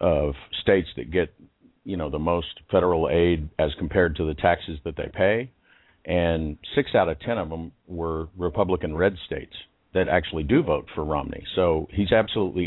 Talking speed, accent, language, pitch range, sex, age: 185 wpm, American, English, 80-105 Hz, male, 50-69